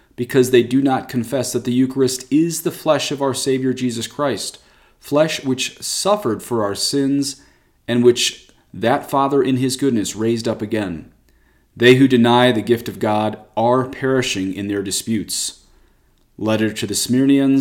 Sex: male